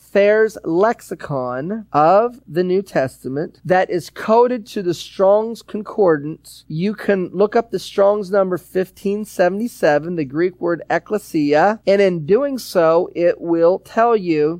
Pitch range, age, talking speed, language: 160-210 Hz, 40-59, 135 wpm, English